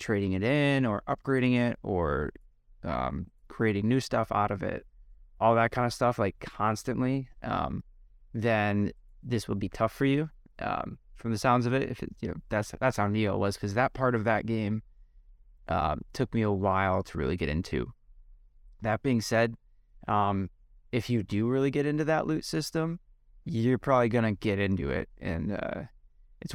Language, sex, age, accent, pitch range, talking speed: English, male, 20-39, American, 100-125 Hz, 180 wpm